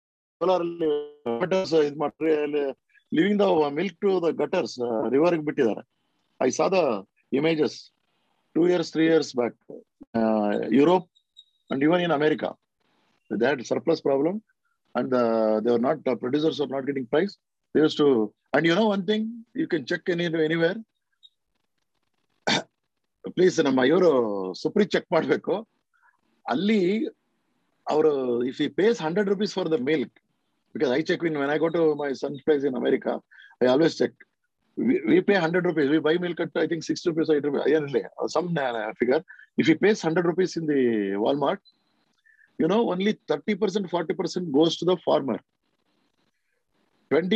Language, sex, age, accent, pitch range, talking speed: Kannada, male, 50-69, native, 150-190 Hz, 130 wpm